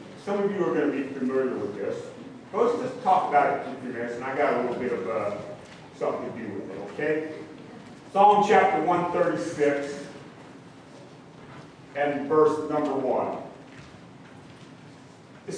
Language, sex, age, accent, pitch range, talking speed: English, male, 40-59, American, 150-215 Hz, 160 wpm